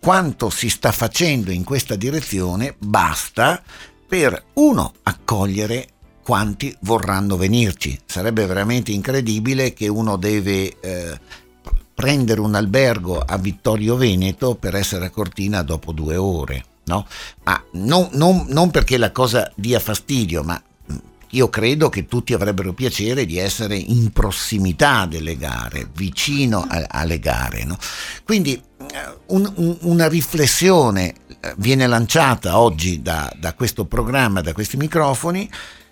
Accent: native